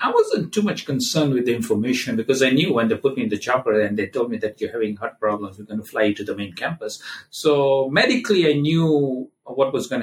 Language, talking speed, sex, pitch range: English, 255 wpm, male, 110-165 Hz